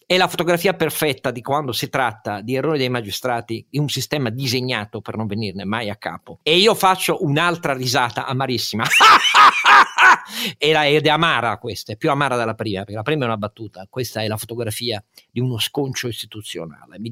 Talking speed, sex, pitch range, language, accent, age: 180 wpm, male, 120-170 Hz, Italian, native, 50-69